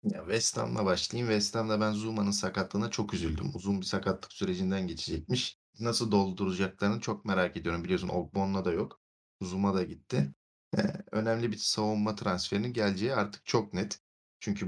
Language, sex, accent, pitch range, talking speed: Turkish, male, native, 95-120 Hz, 150 wpm